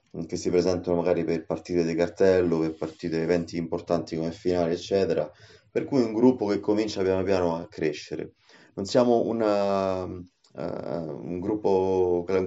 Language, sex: Italian, male